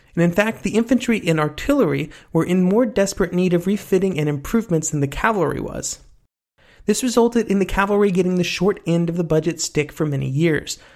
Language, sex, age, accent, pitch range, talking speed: English, male, 30-49, American, 145-190 Hz, 195 wpm